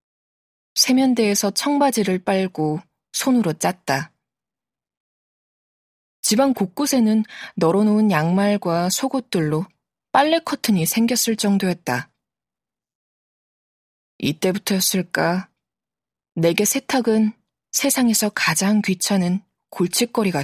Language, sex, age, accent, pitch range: Korean, female, 20-39, native, 180-235 Hz